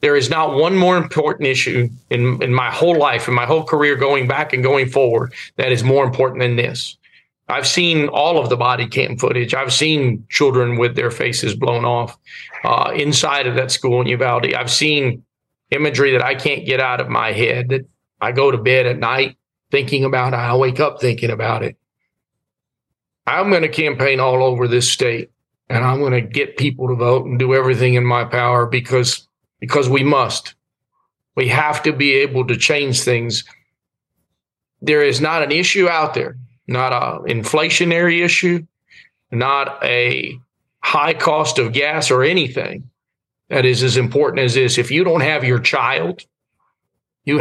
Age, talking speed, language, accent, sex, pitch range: 40-59, 180 wpm, English, American, male, 125-145 Hz